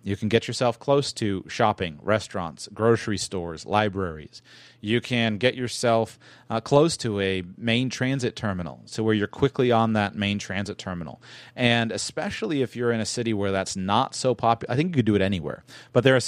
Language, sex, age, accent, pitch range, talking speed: English, male, 30-49, American, 100-125 Hz, 195 wpm